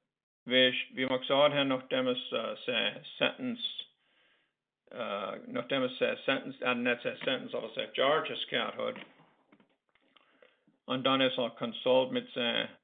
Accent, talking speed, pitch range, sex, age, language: American, 130 wpm, 125-160 Hz, male, 50-69, English